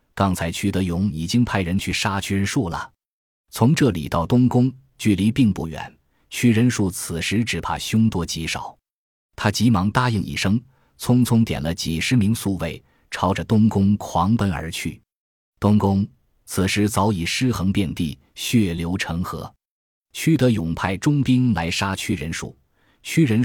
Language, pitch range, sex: Chinese, 90-115 Hz, male